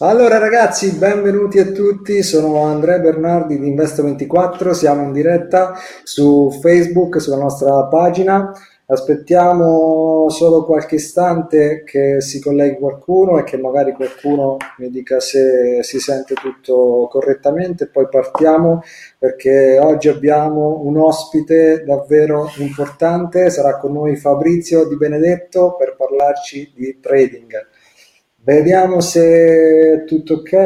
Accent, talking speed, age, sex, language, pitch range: native, 120 wpm, 30-49, male, Italian, 140-175 Hz